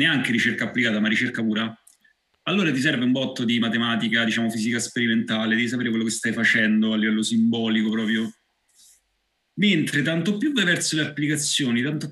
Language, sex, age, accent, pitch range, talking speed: Italian, male, 30-49, native, 115-155 Hz, 170 wpm